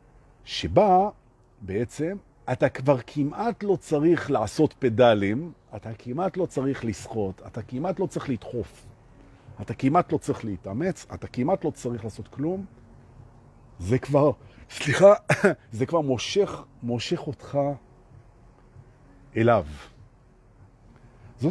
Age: 50-69